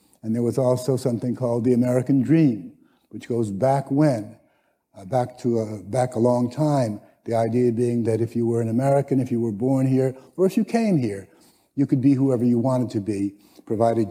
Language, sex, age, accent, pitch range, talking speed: English, male, 60-79, American, 115-140 Hz, 205 wpm